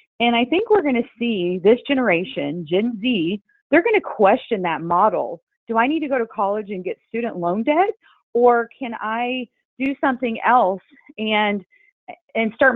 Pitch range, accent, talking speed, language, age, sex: 185-245 Hz, American, 180 wpm, English, 30-49, female